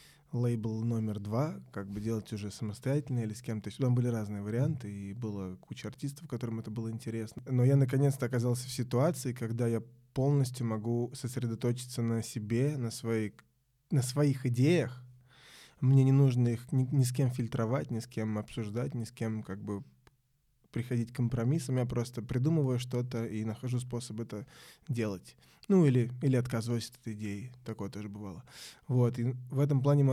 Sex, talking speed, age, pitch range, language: male, 170 wpm, 20-39, 115-135 Hz, Russian